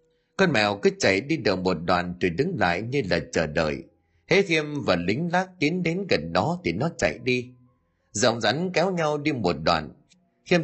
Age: 30-49